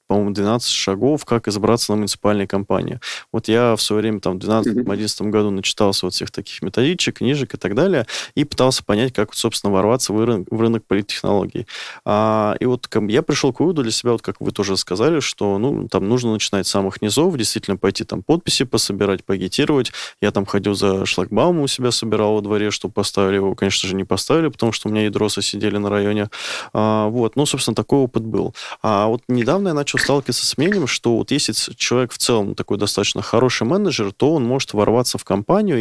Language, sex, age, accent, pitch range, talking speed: Russian, male, 20-39, native, 100-120 Hz, 205 wpm